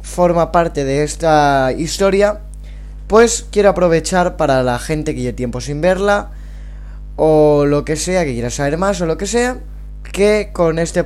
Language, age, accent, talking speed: Spanish, 20-39, Spanish, 170 wpm